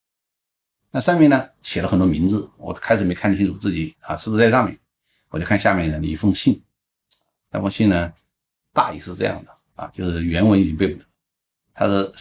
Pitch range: 80-105 Hz